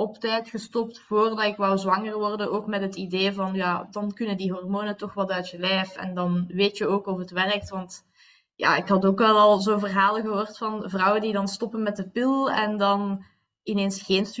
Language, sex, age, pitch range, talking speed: Dutch, female, 20-39, 195-225 Hz, 220 wpm